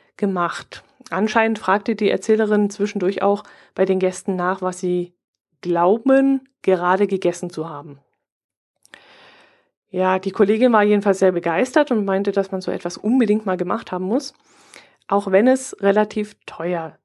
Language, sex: German, female